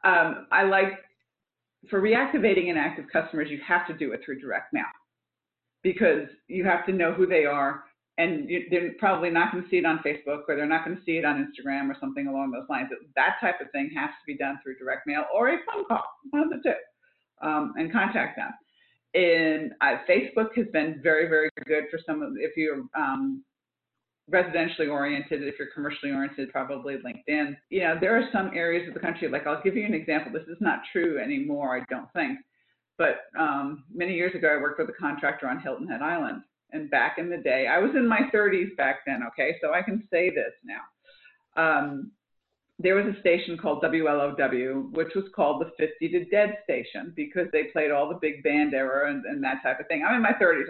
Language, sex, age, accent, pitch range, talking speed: English, female, 40-59, American, 150-220 Hz, 210 wpm